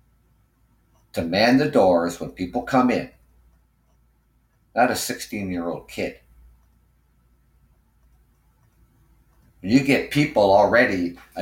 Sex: male